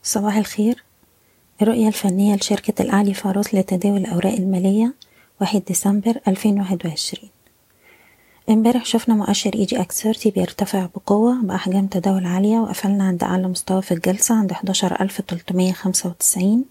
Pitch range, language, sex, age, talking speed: 185-215 Hz, Arabic, female, 20-39, 120 wpm